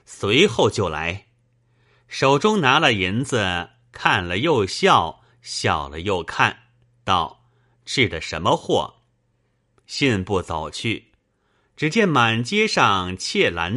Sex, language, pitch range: male, Chinese, 100-140 Hz